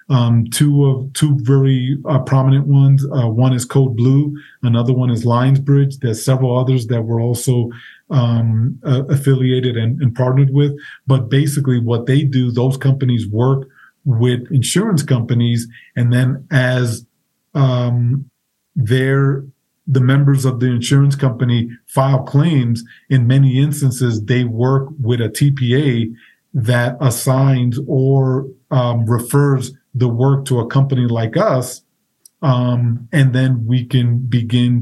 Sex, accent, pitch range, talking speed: male, American, 120-135 Hz, 140 wpm